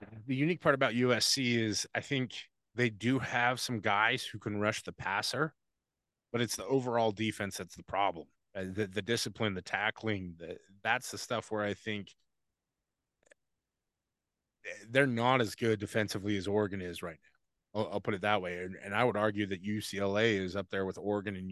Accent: American